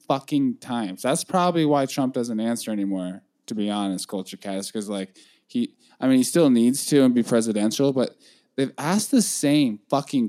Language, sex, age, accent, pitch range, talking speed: English, male, 10-29, American, 115-145 Hz, 185 wpm